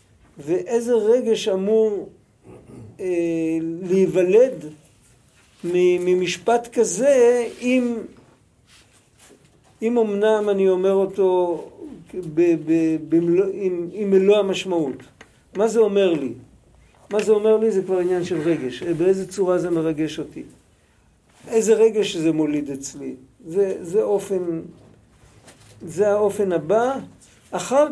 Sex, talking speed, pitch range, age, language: male, 105 wpm, 165-220 Hz, 50-69, Hebrew